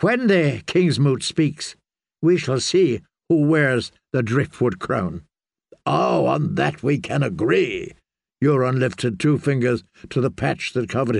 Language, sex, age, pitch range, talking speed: English, male, 60-79, 125-170 Hz, 145 wpm